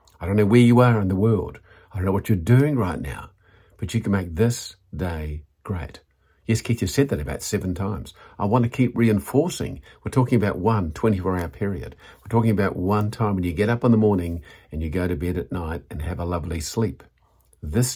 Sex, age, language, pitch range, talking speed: male, 50-69, English, 85-105 Hz, 225 wpm